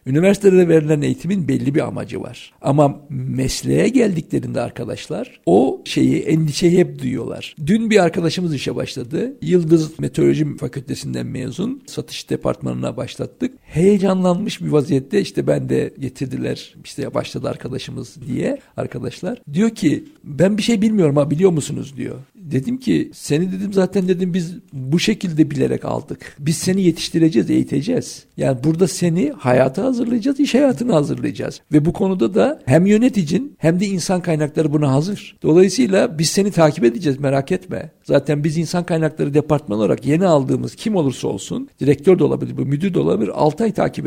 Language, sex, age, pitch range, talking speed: Turkish, male, 60-79, 145-195 Hz, 150 wpm